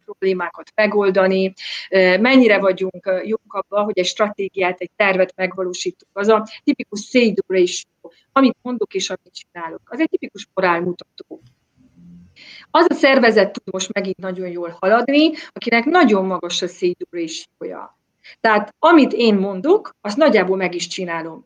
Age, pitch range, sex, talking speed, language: 30-49, 180-225 Hz, female, 135 wpm, Hungarian